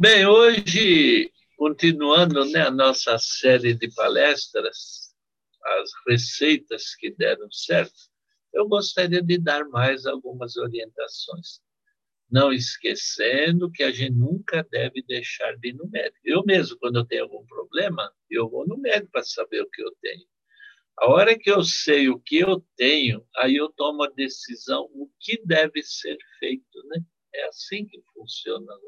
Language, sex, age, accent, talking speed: Portuguese, male, 60-79, Brazilian, 155 wpm